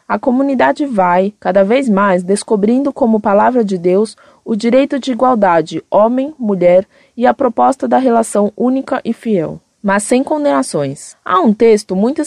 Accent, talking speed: Brazilian, 150 wpm